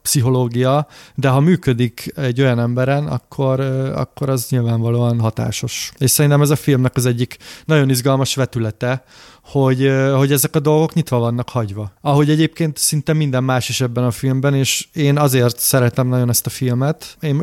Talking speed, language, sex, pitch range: 165 wpm, Hungarian, male, 125-145 Hz